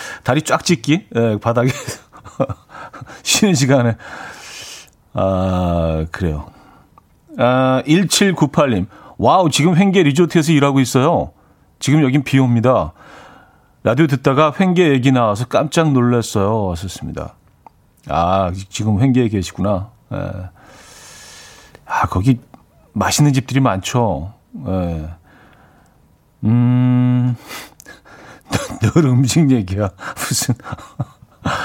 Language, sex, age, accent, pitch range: Korean, male, 40-59, native, 110-145 Hz